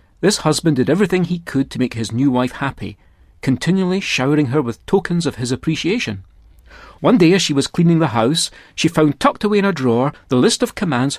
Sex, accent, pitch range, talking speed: male, British, 115-180 Hz, 210 wpm